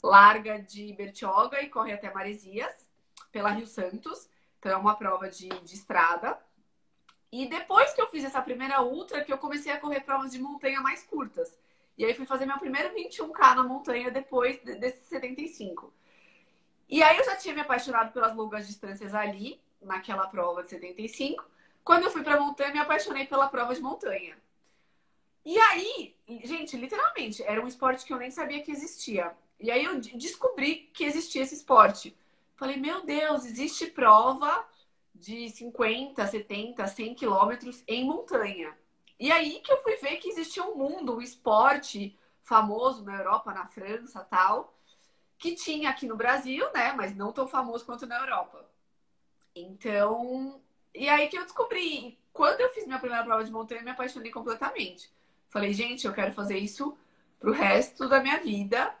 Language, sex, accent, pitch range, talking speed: Portuguese, female, Brazilian, 215-290 Hz, 170 wpm